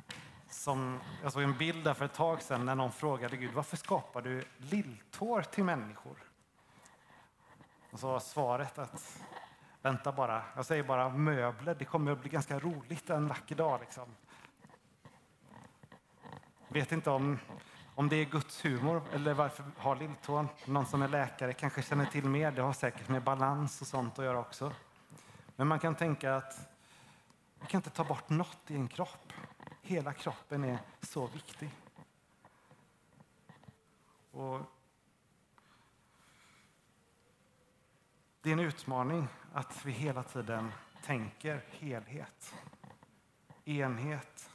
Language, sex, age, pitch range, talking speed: Swedish, male, 30-49, 130-155 Hz, 135 wpm